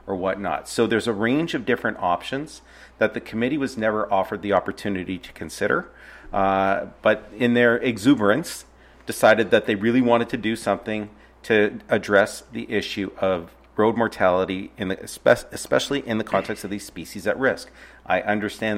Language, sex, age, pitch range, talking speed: English, male, 40-59, 95-110 Hz, 165 wpm